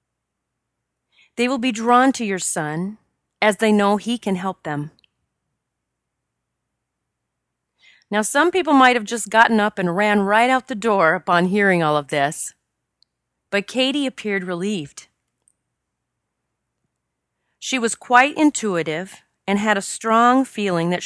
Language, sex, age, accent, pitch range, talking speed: English, female, 30-49, American, 175-240 Hz, 135 wpm